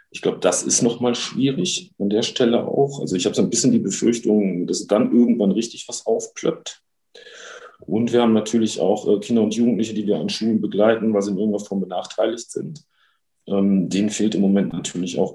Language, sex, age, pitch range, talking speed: German, male, 40-59, 95-120 Hz, 200 wpm